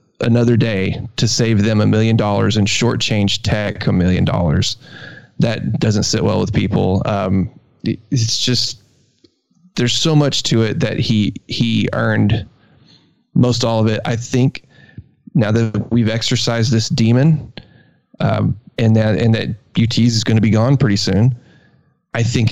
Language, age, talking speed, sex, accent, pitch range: English, 20-39, 155 wpm, male, American, 105-130 Hz